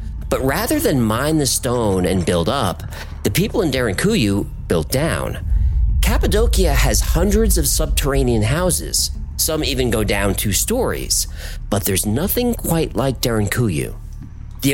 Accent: American